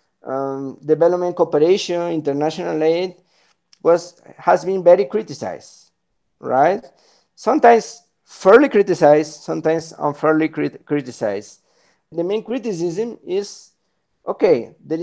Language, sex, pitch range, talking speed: English, male, 140-185 Hz, 90 wpm